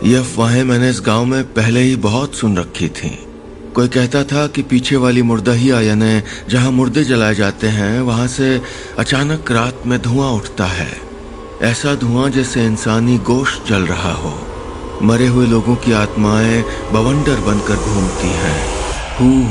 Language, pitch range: Hindi, 105-130 Hz